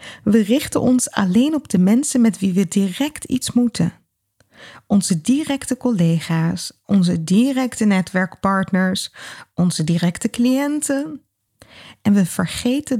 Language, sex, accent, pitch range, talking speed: Dutch, female, Dutch, 185-250 Hz, 115 wpm